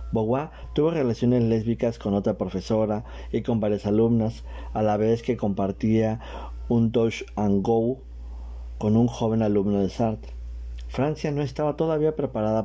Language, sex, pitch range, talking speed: Spanish, male, 95-120 Hz, 145 wpm